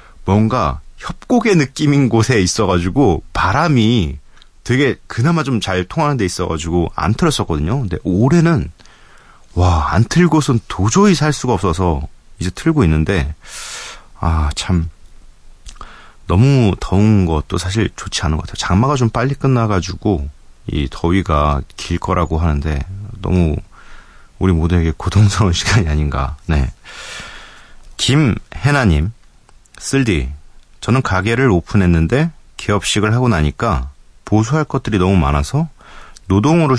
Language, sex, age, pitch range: Korean, male, 30-49, 80-115 Hz